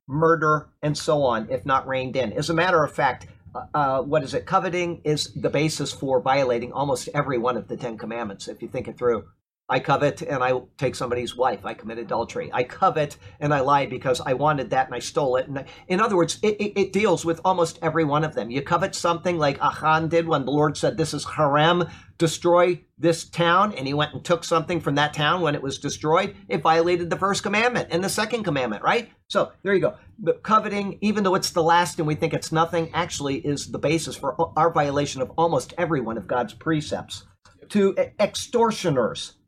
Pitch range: 140-175 Hz